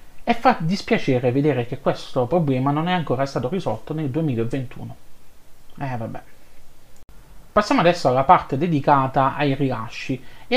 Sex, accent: male, native